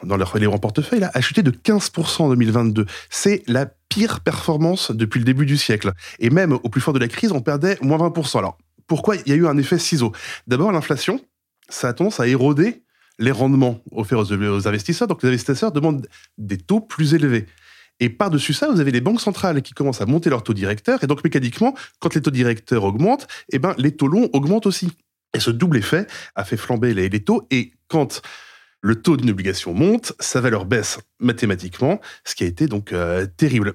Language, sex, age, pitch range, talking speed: French, male, 20-39, 115-165 Hz, 215 wpm